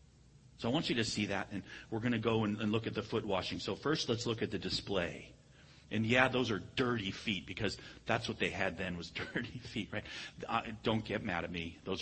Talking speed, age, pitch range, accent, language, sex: 245 wpm, 40-59, 100-135 Hz, American, English, male